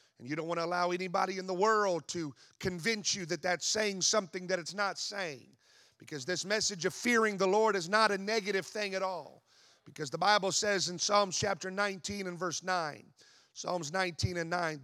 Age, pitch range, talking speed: 40-59, 165-200 Hz, 200 wpm